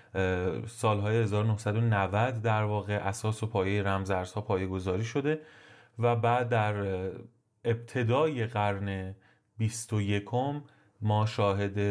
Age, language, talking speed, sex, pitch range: 30-49, Persian, 100 wpm, male, 100-120 Hz